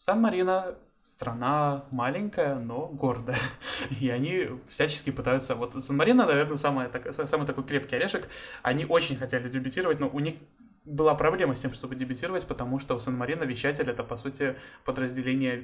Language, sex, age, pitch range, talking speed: Russian, male, 20-39, 125-145 Hz, 155 wpm